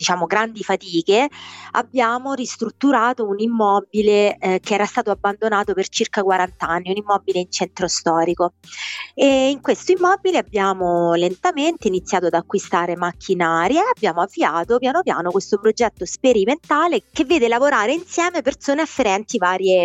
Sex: female